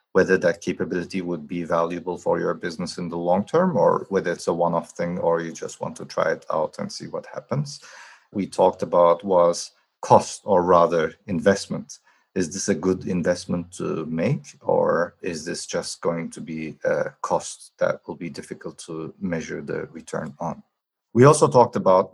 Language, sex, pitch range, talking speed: English, male, 85-100 Hz, 185 wpm